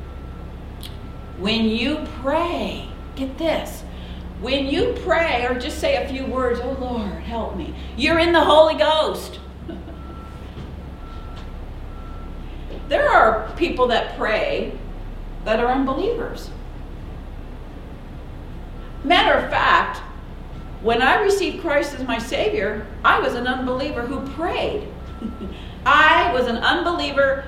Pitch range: 175-275 Hz